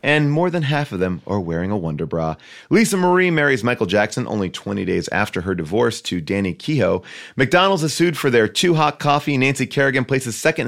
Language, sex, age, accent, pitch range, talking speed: English, male, 30-49, American, 120-165 Hz, 210 wpm